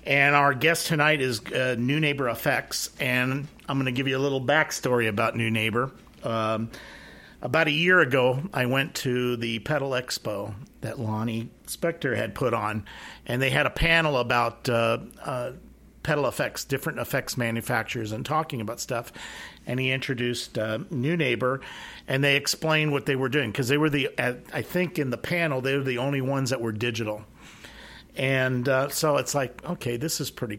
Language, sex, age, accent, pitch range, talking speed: English, male, 50-69, American, 115-145 Hz, 185 wpm